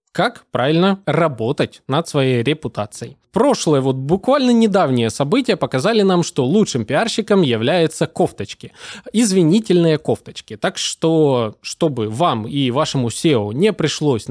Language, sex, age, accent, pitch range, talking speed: Russian, male, 20-39, native, 120-185 Hz, 120 wpm